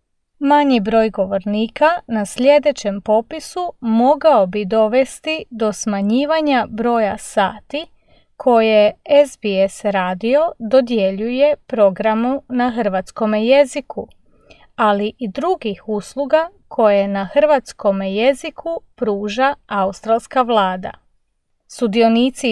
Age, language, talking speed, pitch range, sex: 30-49, English, 90 wpm, 205-285 Hz, female